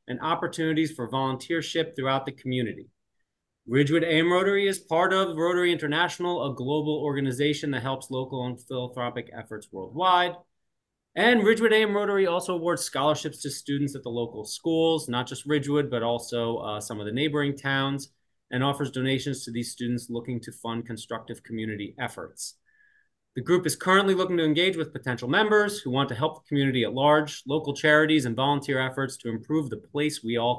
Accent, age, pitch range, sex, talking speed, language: American, 30-49, 125-165 Hz, male, 175 wpm, English